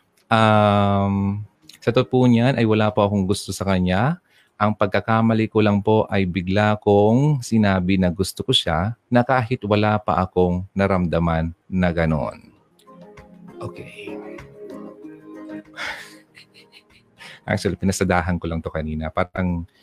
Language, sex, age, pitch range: Filipino, male, 30-49, 85-105 Hz